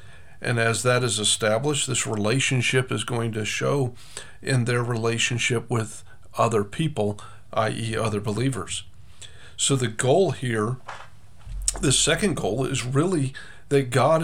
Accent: American